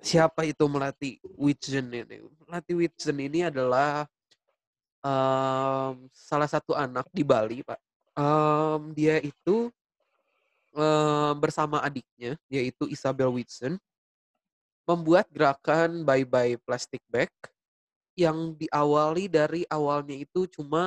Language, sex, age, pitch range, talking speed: Indonesian, male, 20-39, 130-155 Hz, 105 wpm